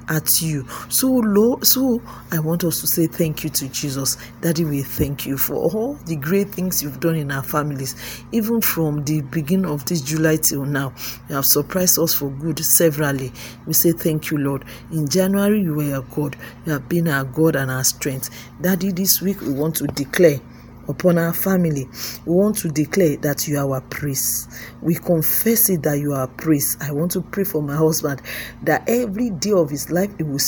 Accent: Nigerian